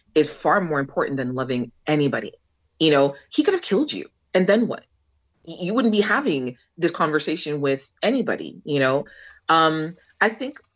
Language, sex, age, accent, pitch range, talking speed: English, female, 30-49, American, 140-180 Hz, 165 wpm